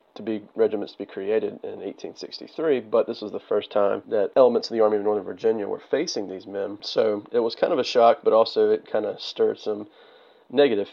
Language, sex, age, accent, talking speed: English, male, 40-59, American, 225 wpm